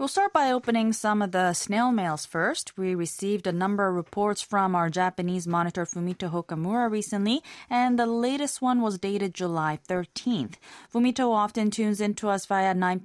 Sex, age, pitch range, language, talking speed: female, 20-39, 165-220 Hz, English, 170 wpm